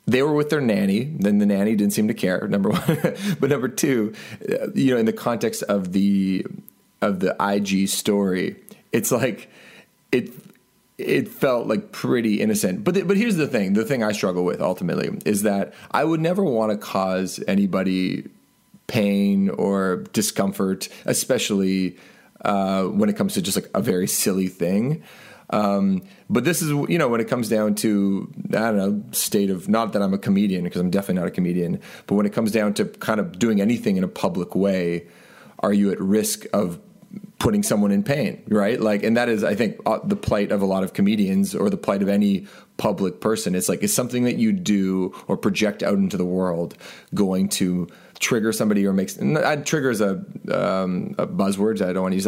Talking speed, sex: 200 wpm, male